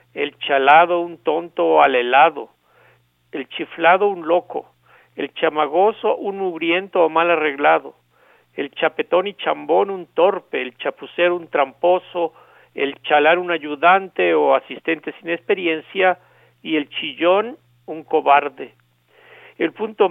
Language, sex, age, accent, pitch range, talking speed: Spanish, male, 50-69, Mexican, 140-185 Hz, 125 wpm